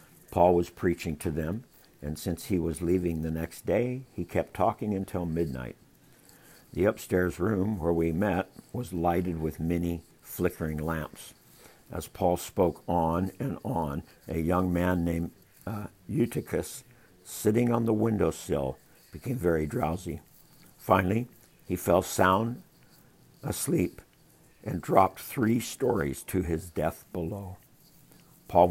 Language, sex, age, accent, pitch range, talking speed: English, male, 60-79, American, 85-110 Hz, 130 wpm